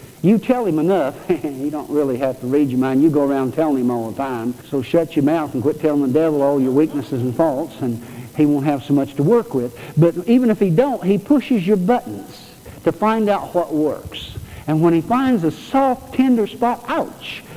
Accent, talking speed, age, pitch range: American, 225 wpm, 60-79, 160-235 Hz